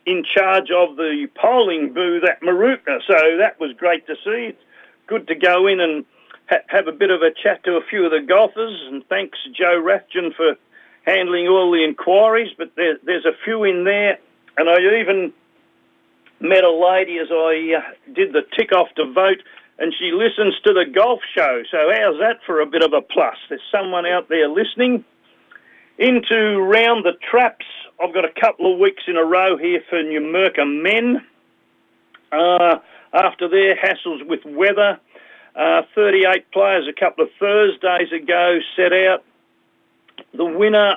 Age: 50-69